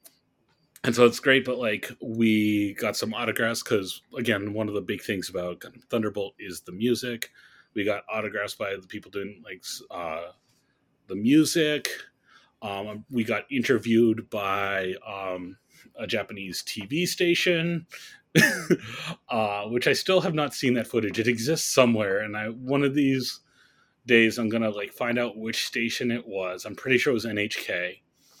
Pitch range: 105-130 Hz